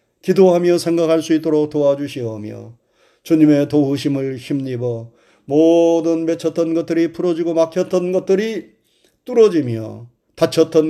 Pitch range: 125-165 Hz